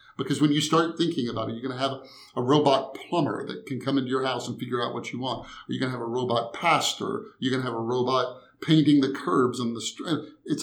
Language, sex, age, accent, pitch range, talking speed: English, male, 50-69, American, 120-150 Hz, 250 wpm